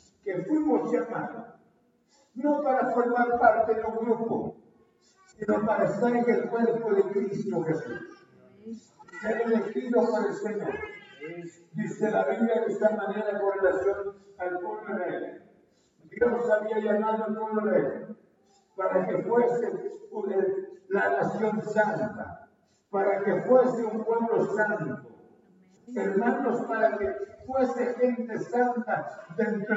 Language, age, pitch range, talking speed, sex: Spanish, 50-69, 205-240 Hz, 125 wpm, male